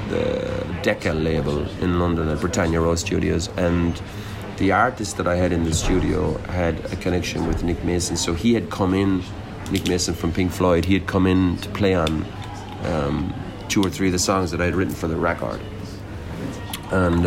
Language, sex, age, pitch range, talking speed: English, male, 40-59, 85-100 Hz, 195 wpm